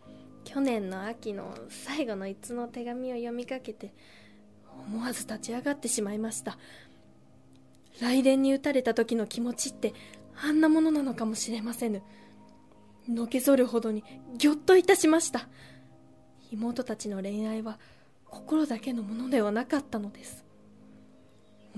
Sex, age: female, 20-39